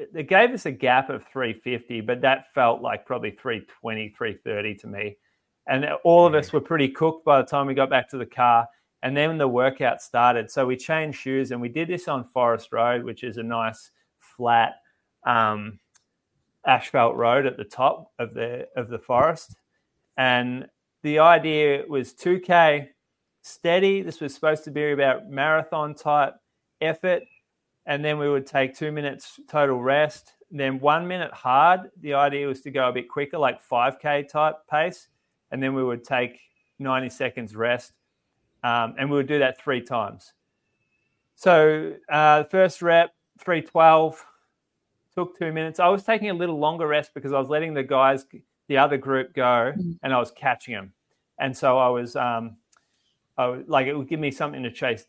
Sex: male